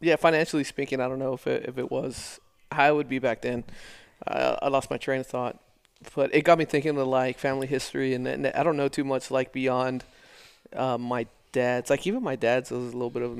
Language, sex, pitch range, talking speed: English, male, 125-140 Hz, 250 wpm